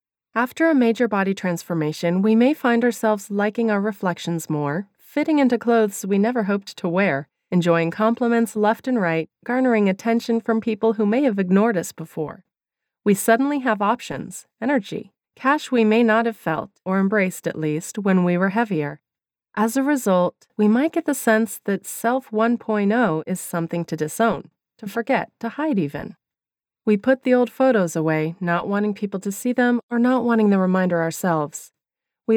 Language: English